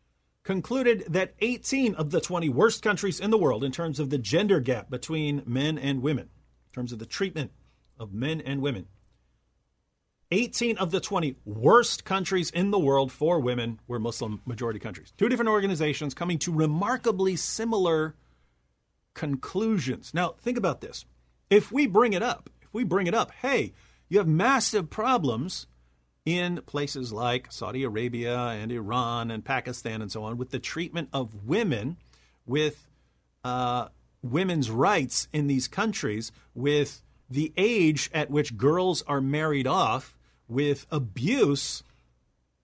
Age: 40-59